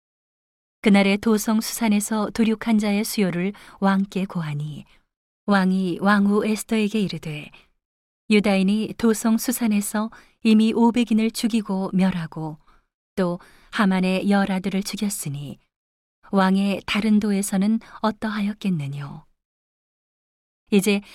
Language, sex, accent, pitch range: Korean, female, native, 180-215 Hz